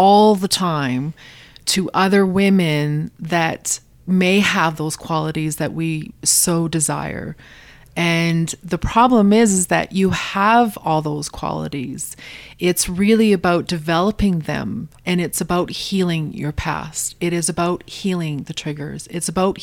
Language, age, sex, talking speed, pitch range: English, 30-49, female, 140 wpm, 155-185 Hz